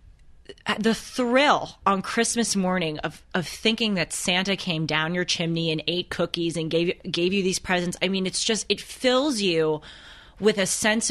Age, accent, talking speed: 30-49, American, 180 wpm